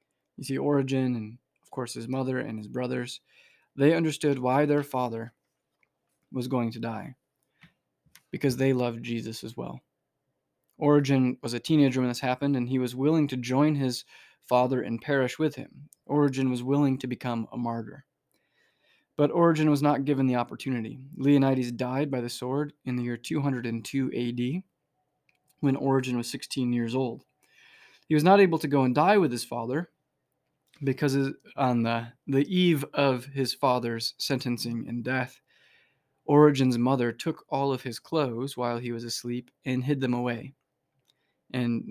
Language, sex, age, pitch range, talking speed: English, male, 20-39, 125-145 Hz, 160 wpm